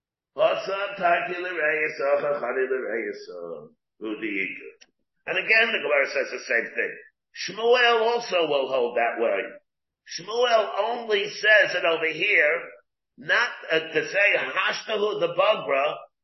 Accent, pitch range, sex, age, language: American, 170-240 Hz, male, 50-69, English